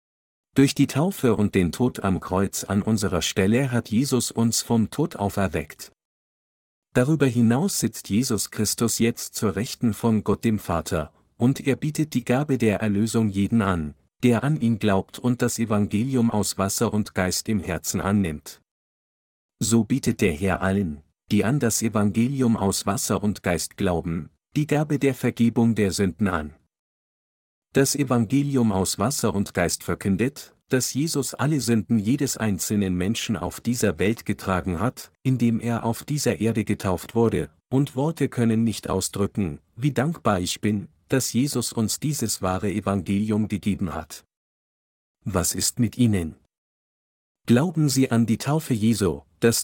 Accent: German